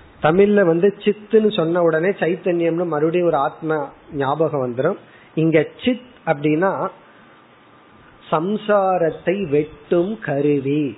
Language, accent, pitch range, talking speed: Tamil, native, 140-180 Hz, 80 wpm